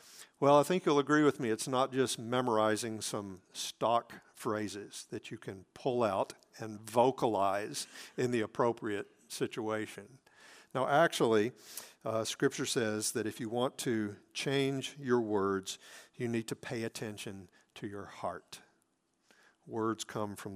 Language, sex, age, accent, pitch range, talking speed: English, male, 50-69, American, 110-140 Hz, 145 wpm